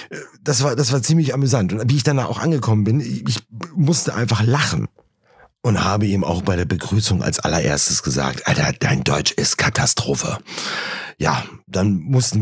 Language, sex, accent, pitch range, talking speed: German, male, German, 90-115 Hz, 175 wpm